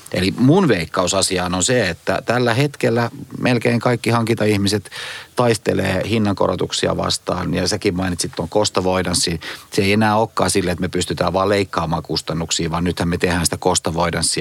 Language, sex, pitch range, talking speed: Finnish, male, 85-110 Hz, 155 wpm